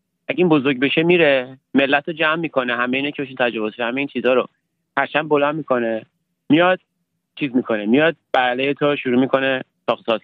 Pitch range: 125-165 Hz